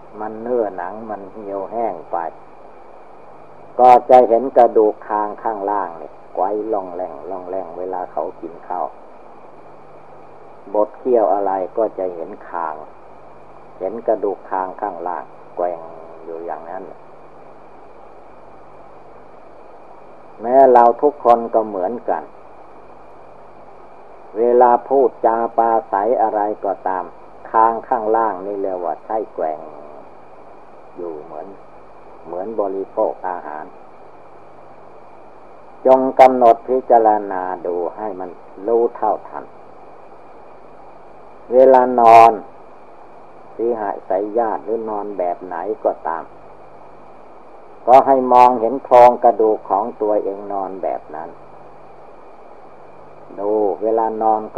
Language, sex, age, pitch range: Thai, male, 50-69, 95-120 Hz